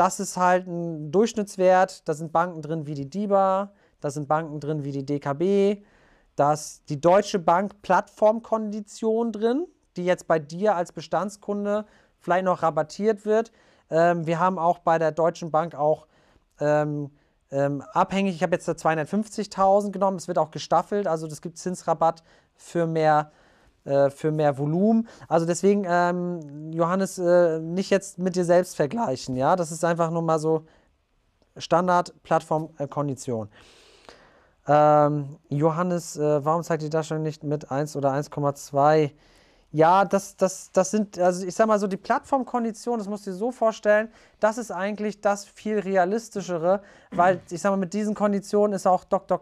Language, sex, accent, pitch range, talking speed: German, male, German, 155-205 Hz, 165 wpm